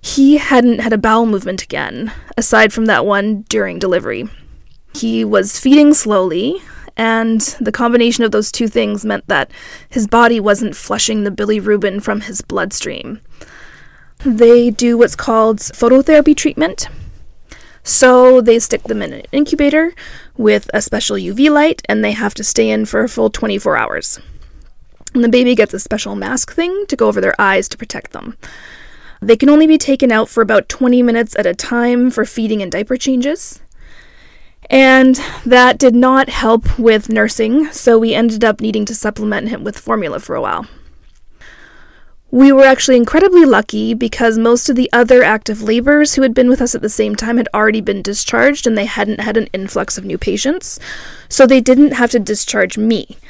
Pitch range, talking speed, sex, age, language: 215-260 Hz, 180 wpm, female, 20-39, English